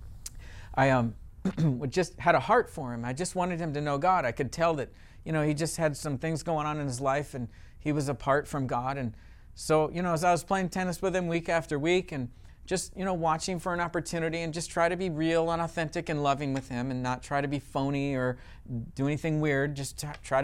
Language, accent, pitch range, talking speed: English, American, 130-175 Hz, 240 wpm